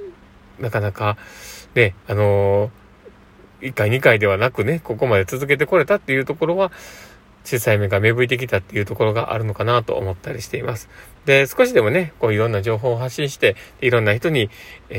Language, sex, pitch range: Japanese, male, 105-135 Hz